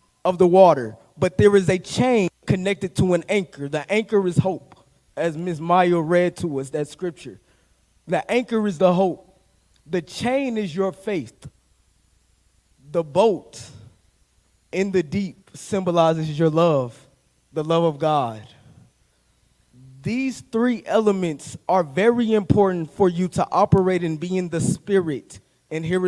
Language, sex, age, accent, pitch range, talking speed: English, male, 20-39, American, 150-195 Hz, 145 wpm